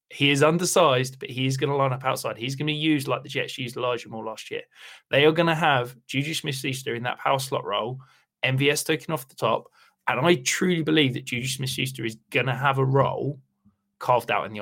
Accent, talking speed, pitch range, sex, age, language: British, 235 wpm, 125-155 Hz, male, 20-39, English